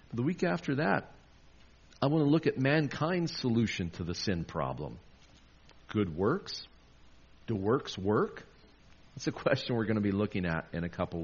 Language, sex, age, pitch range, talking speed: English, male, 50-69, 80-125 Hz, 170 wpm